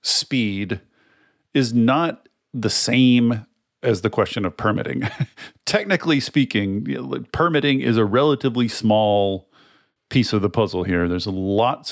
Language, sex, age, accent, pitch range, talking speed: English, male, 40-59, American, 100-130 Hz, 130 wpm